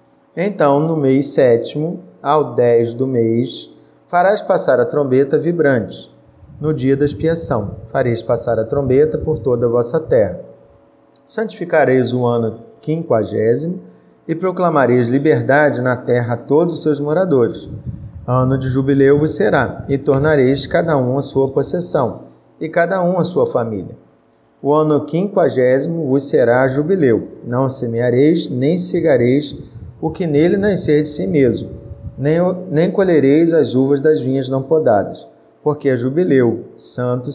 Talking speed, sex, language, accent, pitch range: 140 wpm, male, Portuguese, Brazilian, 130-155 Hz